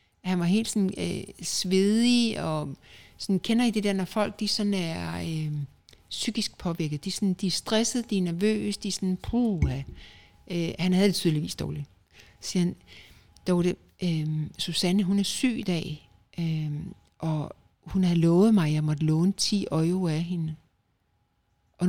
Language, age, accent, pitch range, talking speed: Danish, 60-79, native, 155-200 Hz, 175 wpm